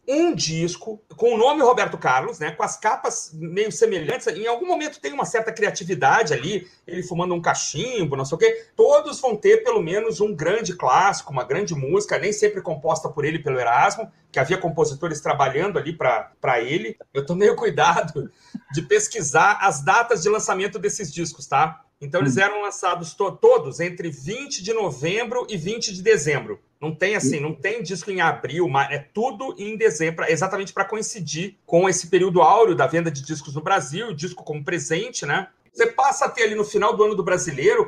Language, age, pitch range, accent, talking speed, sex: Portuguese, 40-59, 175-275 Hz, Brazilian, 195 wpm, male